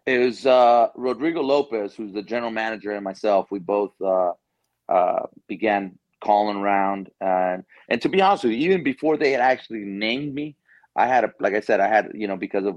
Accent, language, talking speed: American, English, 205 wpm